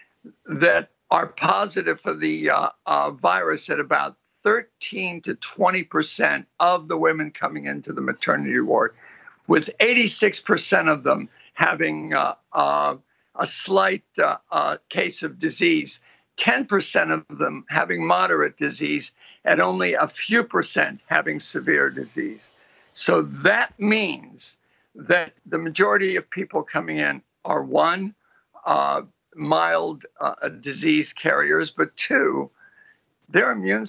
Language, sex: English, male